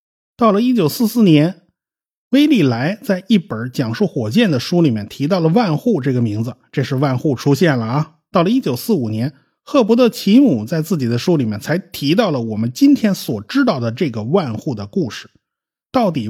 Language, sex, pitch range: Chinese, male, 125-205 Hz